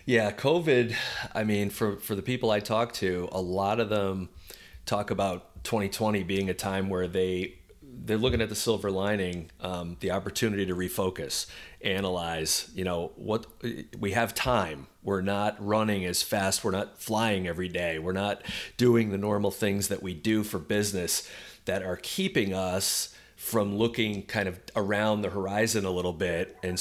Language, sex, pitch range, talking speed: English, male, 90-105 Hz, 175 wpm